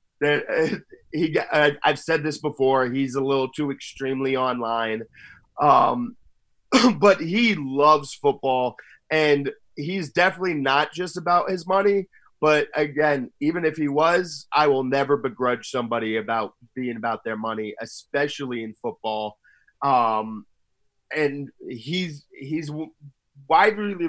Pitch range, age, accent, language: 130-160 Hz, 30-49, American, English